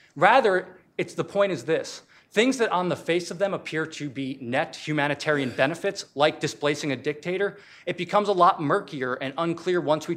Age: 40-59